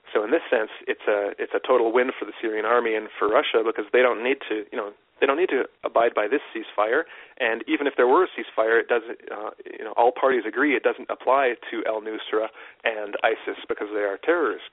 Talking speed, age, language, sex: 240 wpm, 40-59, English, male